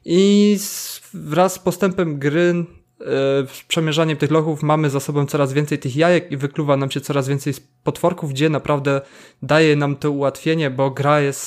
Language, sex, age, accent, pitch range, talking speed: Polish, male, 20-39, native, 140-170 Hz, 185 wpm